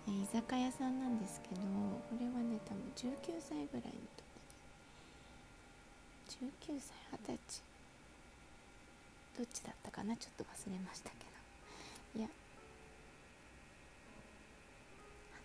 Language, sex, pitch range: Japanese, female, 205-250 Hz